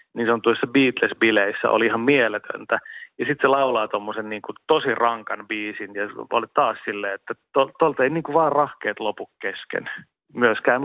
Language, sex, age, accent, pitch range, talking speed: Finnish, male, 30-49, native, 110-140 Hz, 160 wpm